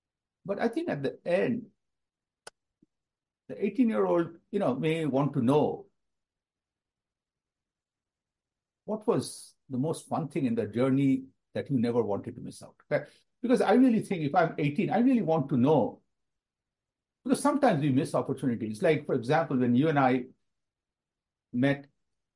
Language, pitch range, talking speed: English, 130-190 Hz, 140 wpm